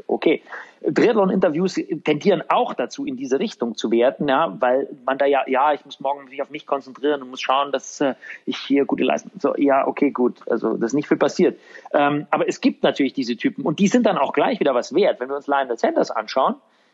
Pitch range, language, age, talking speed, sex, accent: 140-205 Hz, German, 40-59, 230 wpm, male, German